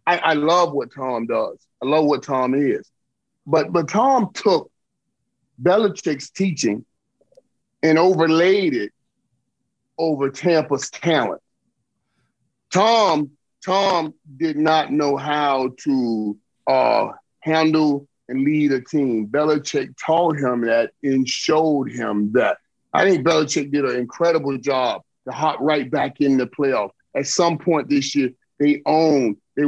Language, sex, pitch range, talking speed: English, male, 140-195 Hz, 135 wpm